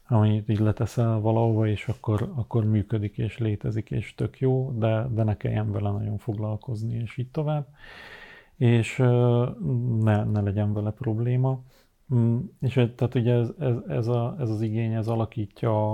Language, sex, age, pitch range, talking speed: Hungarian, male, 40-59, 110-120 Hz, 155 wpm